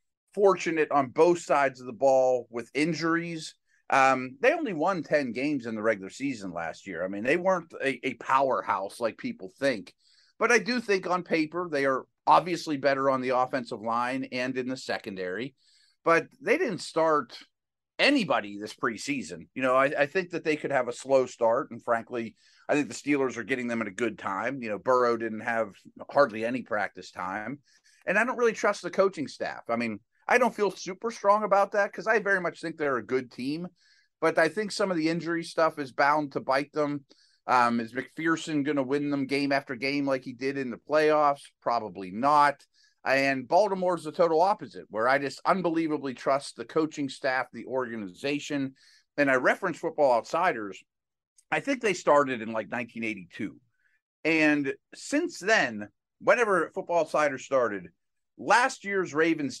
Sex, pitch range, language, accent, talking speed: male, 130-170 Hz, English, American, 185 wpm